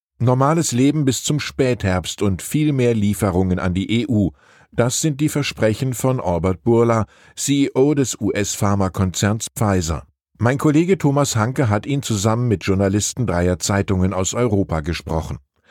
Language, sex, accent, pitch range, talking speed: German, male, German, 95-135 Hz, 140 wpm